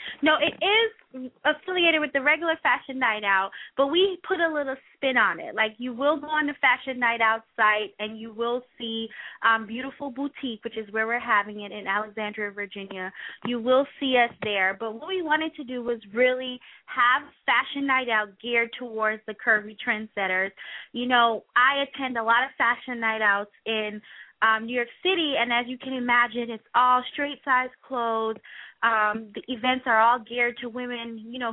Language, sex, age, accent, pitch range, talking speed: English, female, 20-39, American, 220-275 Hz, 190 wpm